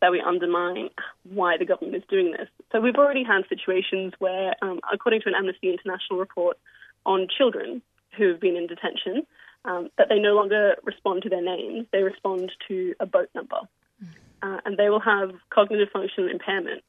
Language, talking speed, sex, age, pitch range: English, 185 wpm, female, 20-39, 185-265 Hz